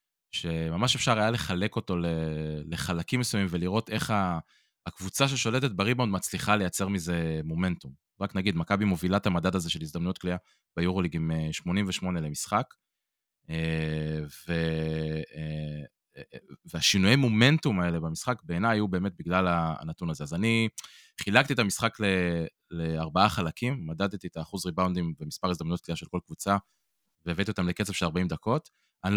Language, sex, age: Hebrew, male, 20-39